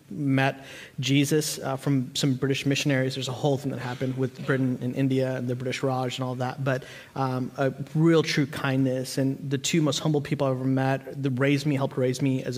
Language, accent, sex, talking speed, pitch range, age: English, American, male, 220 wpm, 130-150 Hz, 30-49